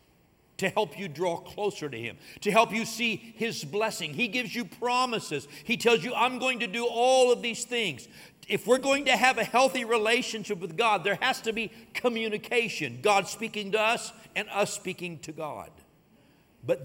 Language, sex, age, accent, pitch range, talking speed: English, male, 60-79, American, 165-240 Hz, 190 wpm